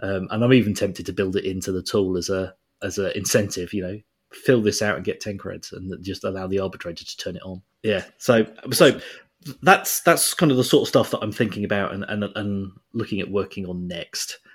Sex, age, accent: male, 30-49, British